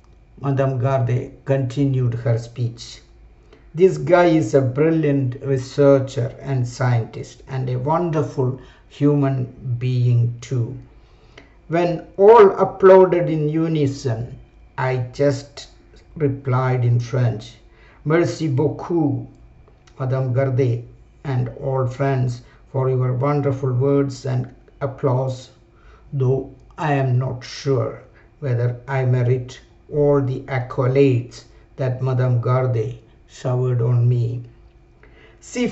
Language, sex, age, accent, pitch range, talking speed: English, male, 60-79, Indian, 125-150 Hz, 100 wpm